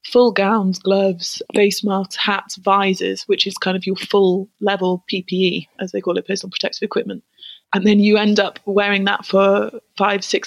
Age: 20-39